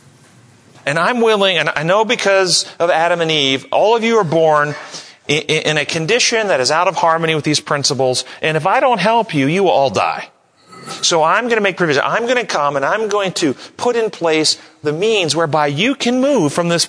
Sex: male